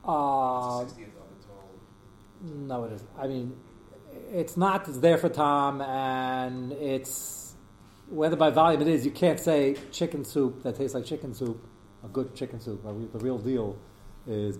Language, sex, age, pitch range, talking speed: English, male, 40-59, 110-135 Hz, 150 wpm